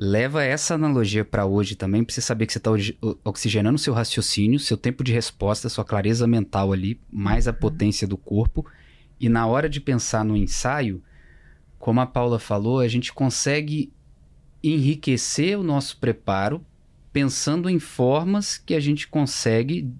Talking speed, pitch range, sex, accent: 160 wpm, 110-155 Hz, male, Brazilian